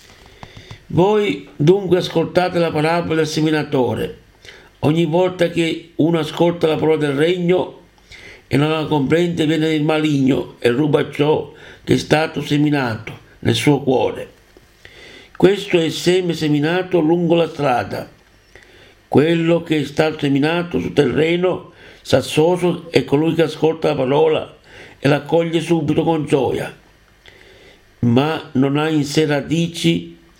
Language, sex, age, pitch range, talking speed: Italian, male, 60-79, 140-160 Hz, 130 wpm